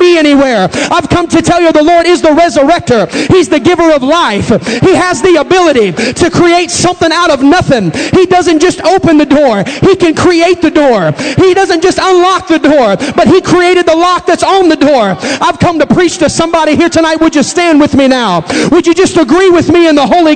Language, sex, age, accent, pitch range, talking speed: English, male, 40-59, American, 275-345 Hz, 220 wpm